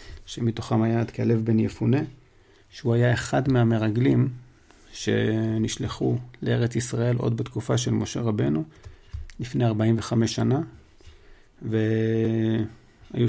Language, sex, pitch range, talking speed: Hebrew, male, 110-130 Hz, 100 wpm